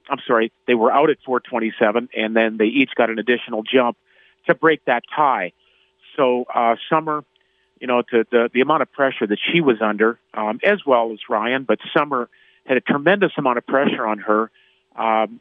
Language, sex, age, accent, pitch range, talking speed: English, male, 50-69, American, 115-140 Hz, 195 wpm